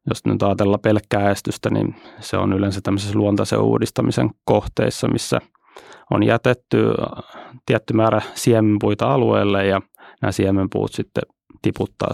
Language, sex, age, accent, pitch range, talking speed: Finnish, male, 30-49, native, 100-120 Hz, 125 wpm